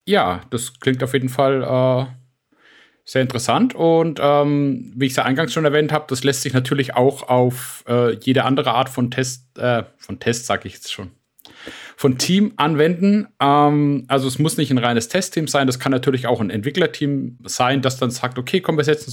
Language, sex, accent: German, male, German